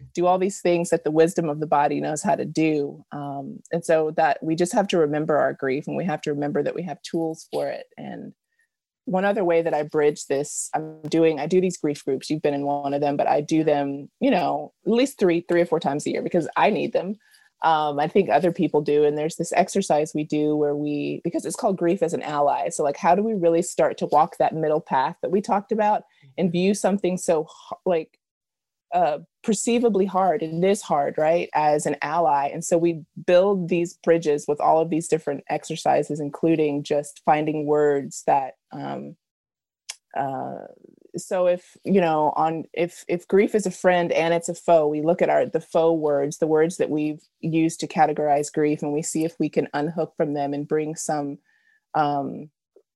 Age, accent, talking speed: 20-39, American, 215 wpm